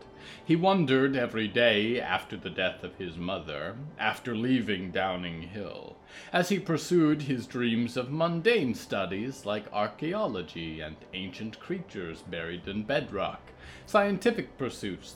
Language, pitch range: English, 95-155 Hz